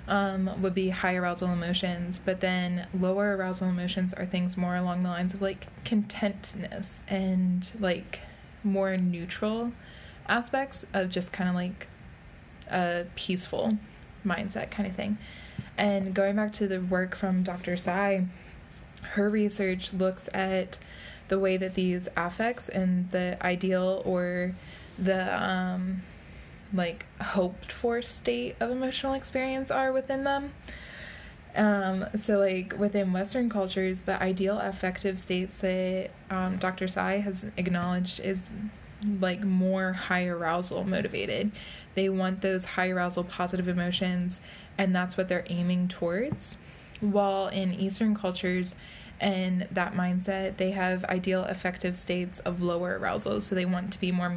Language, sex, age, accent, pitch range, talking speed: English, female, 20-39, American, 180-195 Hz, 140 wpm